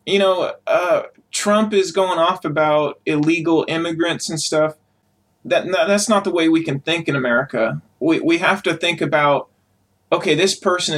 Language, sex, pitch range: English, male, 140-190 Hz